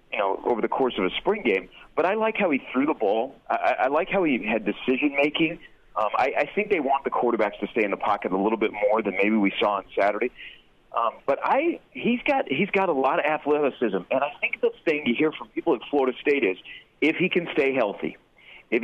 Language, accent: English, American